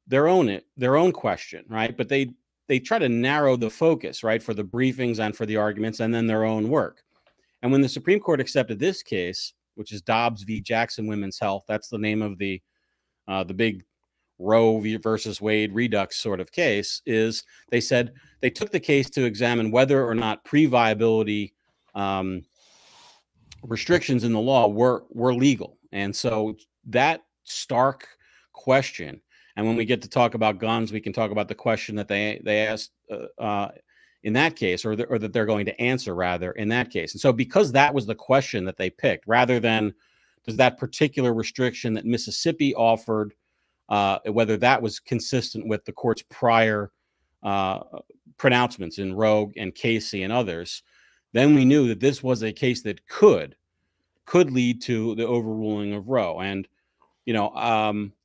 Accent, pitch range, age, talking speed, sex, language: American, 105-125 Hz, 40-59, 185 wpm, male, English